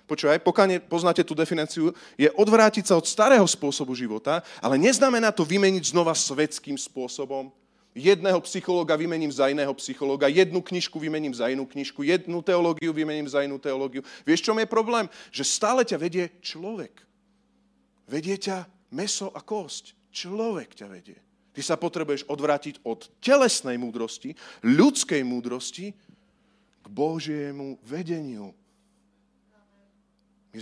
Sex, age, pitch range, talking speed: male, 40-59, 120-190 Hz, 130 wpm